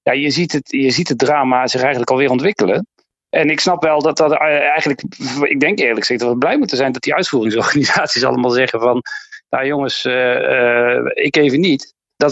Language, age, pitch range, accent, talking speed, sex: Dutch, 40-59, 125-155 Hz, Dutch, 205 wpm, male